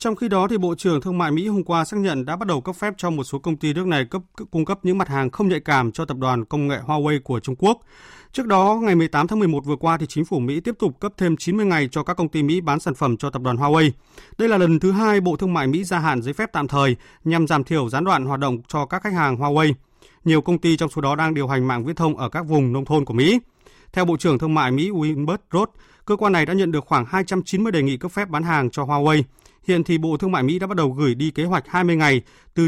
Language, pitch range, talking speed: Vietnamese, 140-185 Hz, 290 wpm